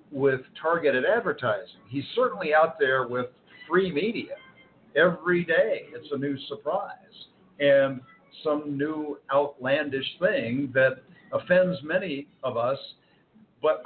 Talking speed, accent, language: 115 wpm, American, English